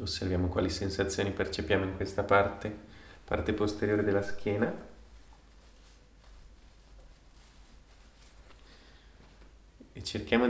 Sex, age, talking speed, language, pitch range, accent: male, 20-39, 75 wpm, English, 90-100 Hz, Italian